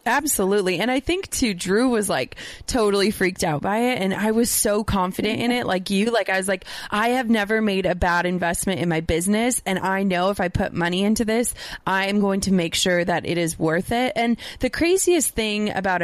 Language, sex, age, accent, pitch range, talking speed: English, female, 20-39, American, 190-235 Hz, 225 wpm